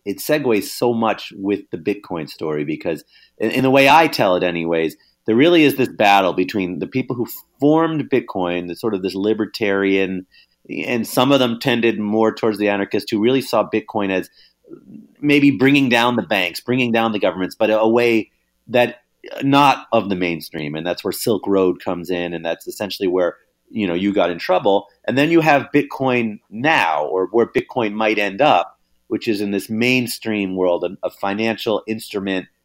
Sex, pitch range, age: male, 95-120 Hz, 30-49